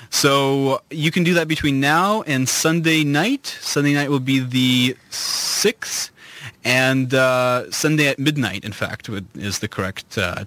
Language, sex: English, male